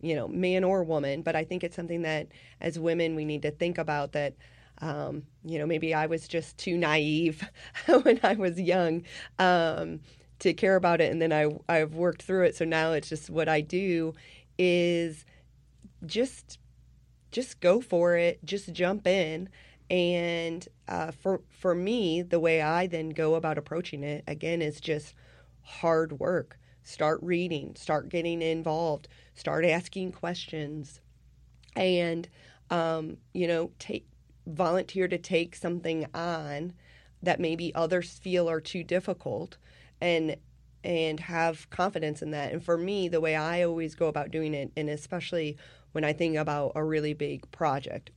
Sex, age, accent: female, 30-49, American